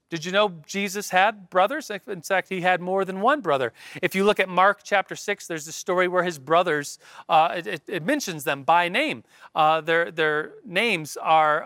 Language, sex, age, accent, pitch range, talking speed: English, male, 40-59, American, 160-215 Hz, 200 wpm